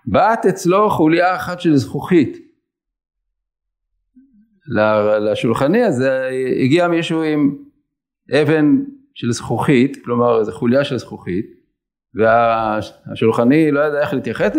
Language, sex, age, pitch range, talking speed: English, male, 50-69, 130-195 Hz, 90 wpm